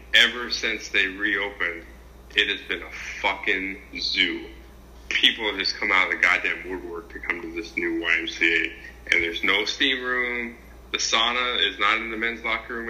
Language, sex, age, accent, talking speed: English, male, 20-39, American, 180 wpm